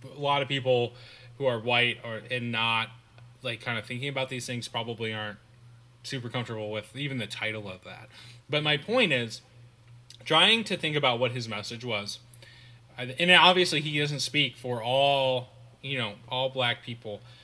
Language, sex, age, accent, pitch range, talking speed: English, male, 20-39, American, 120-145 Hz, 175 wpm